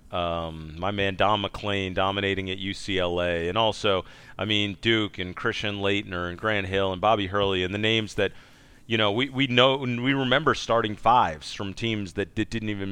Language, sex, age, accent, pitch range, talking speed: English, male, 40-59, American, 95-120 Hz, 195 wpm